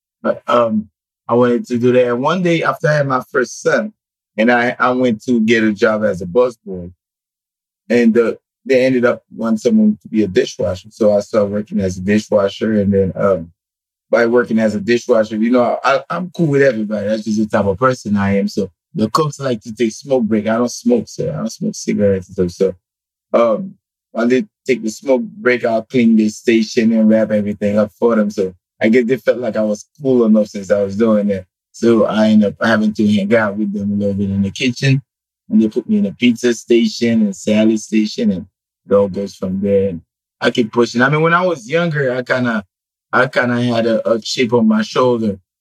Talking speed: 230 wpm